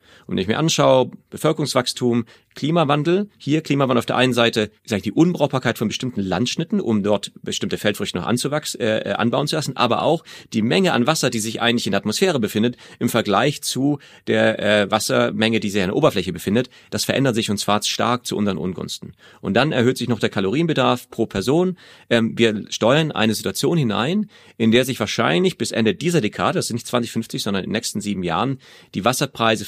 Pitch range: 110-145 Hz